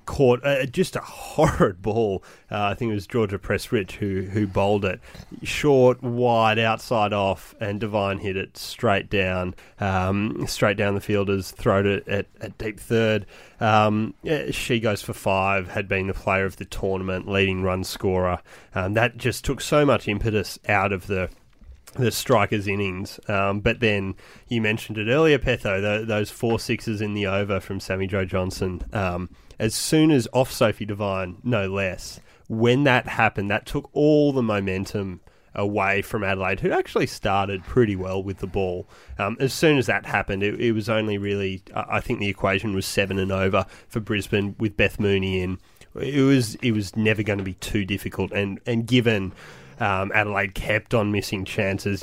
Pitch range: 95-115 Hz